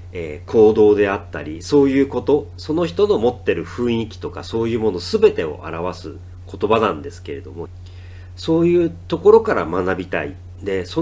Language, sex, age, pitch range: Japanese, male, 40-59, 90-125 Hz